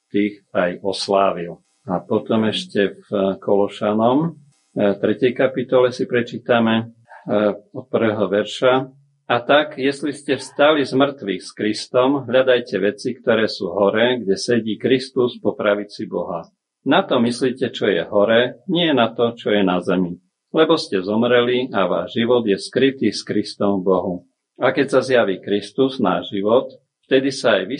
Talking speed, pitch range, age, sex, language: 150 wpm, 105-130 Hz, 50-69, male, Slovak